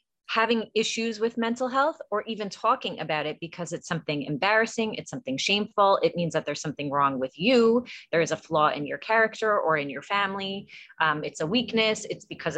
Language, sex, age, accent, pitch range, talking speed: English, female, 30-49, American, 160-205 Hz, 200 wpm